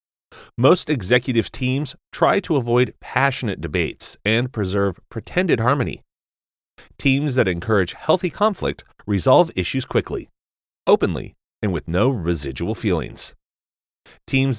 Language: English